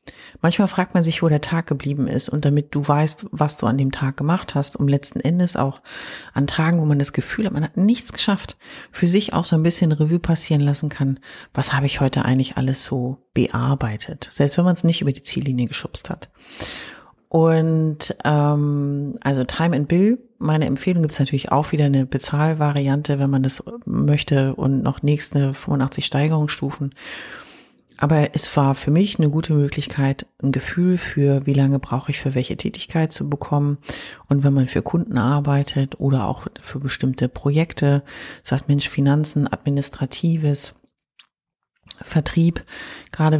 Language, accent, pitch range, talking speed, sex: German, German, 135-155 Hz, 170 wpm, female